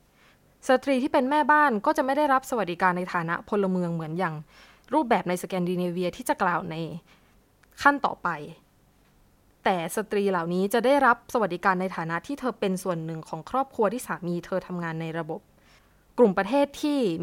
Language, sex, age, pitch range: Thai, female, 20-39, 175-245 Hz